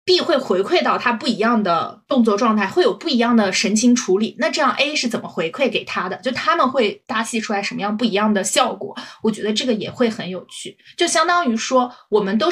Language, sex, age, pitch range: Chinese, female, 20-39, 210-260 Hz